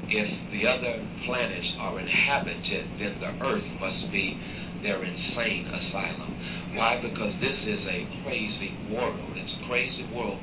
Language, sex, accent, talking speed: English, male, American, 145 wpm